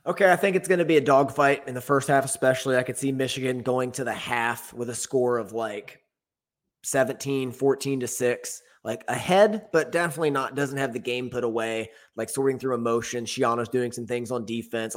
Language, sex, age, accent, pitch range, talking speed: English, male, 20-39, American, 115-135 Hz, 210 wpm